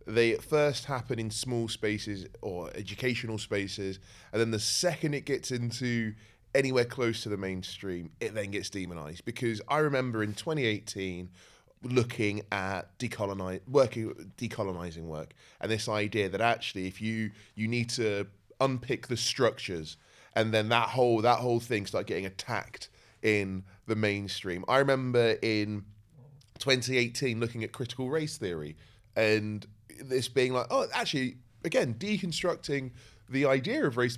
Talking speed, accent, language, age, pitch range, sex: 145 wpm, British, English, 20-39, 105-130 Hz, male